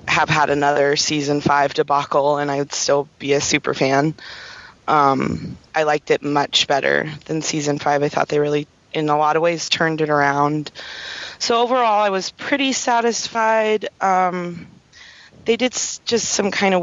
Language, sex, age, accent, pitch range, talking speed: English, female, 20-39, American, 145-175 Hz, 170 wpm